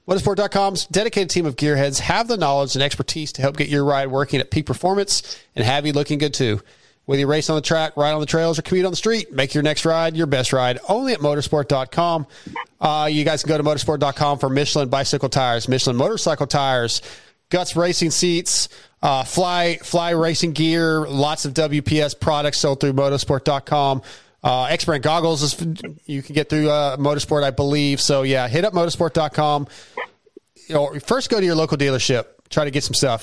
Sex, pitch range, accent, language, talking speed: male, 140-165 Hz, American, English, 195 wpm